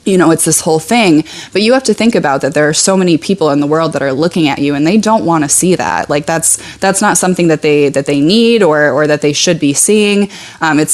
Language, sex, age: English, female, 20-39